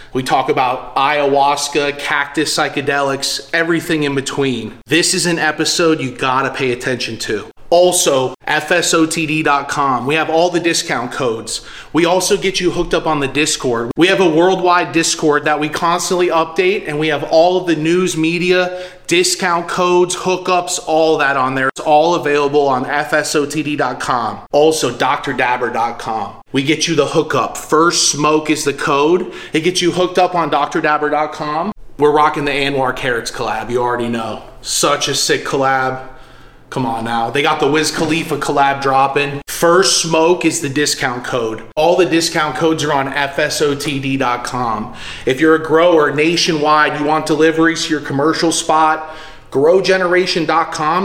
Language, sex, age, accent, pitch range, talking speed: English, male, 30-49, American, 140-165 Hz, 155 wpm